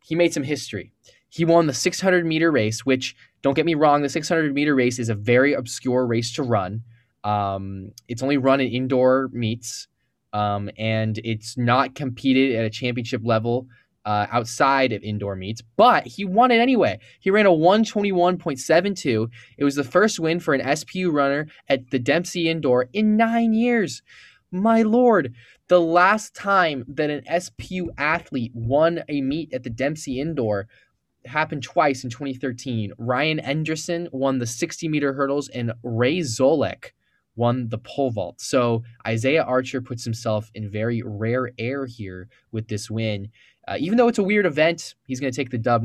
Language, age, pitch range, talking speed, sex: English, 10-29, 120-160 Hz, 170 wpm, male